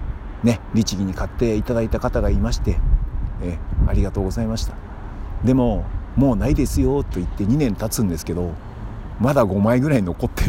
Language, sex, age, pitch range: Japanese, male, 50-69, 85-115 Hz